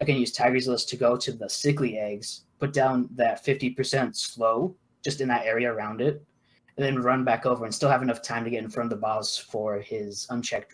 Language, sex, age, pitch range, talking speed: English, male, 20-39, 115-140 Hz, 235 wpm